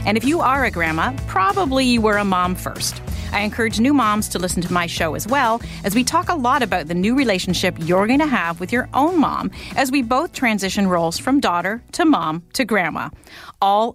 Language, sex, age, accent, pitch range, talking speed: English, female, 40-59, American, 185-265 Hz, 225 wpm